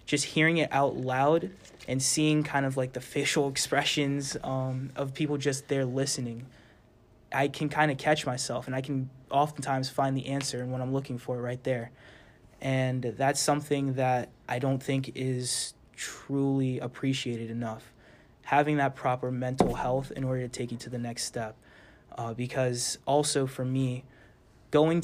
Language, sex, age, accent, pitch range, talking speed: English, male, 20-39, American, 125-135 Hz, 170 wpm